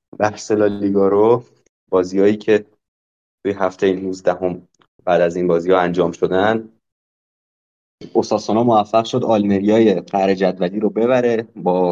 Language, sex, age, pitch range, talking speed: Persian, male, 20-39, 90-115 Hz, 125 wpm